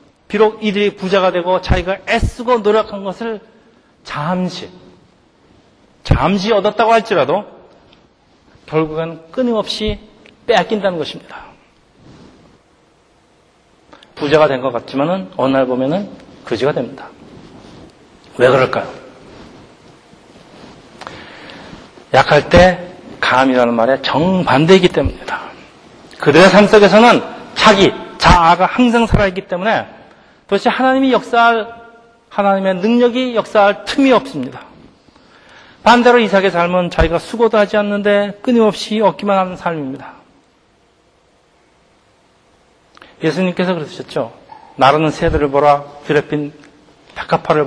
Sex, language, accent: male, Korean, native